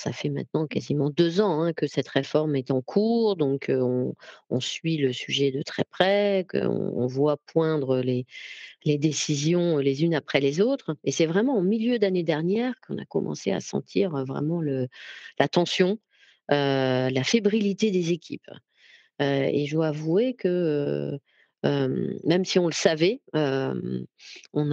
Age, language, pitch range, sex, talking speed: 40-59, French, 140-185 Hz, female, 170 wpm